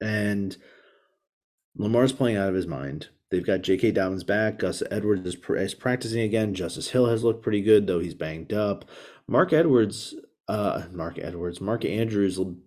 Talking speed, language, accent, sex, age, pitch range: 160 wpm, English, American, male, 30-49, 95-125 Hz